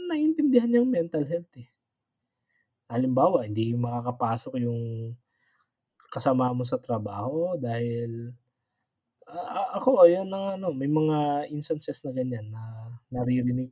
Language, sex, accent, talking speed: Filipino, male, native, 120 wpm